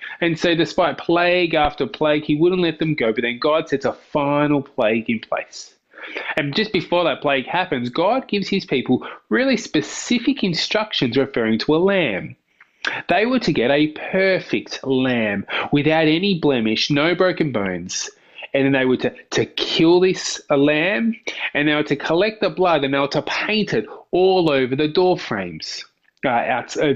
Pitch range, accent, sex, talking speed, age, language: 140-190 Hz, Australian, male, 180 wpm, 20-39, English